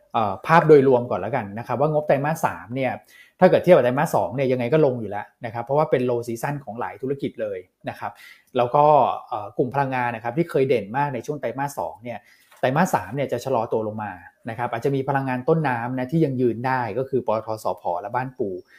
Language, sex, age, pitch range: Thai, male, 20-39, 120-150 Hz